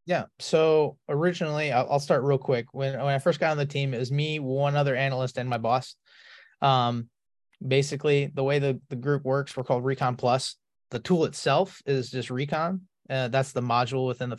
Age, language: 20-39, English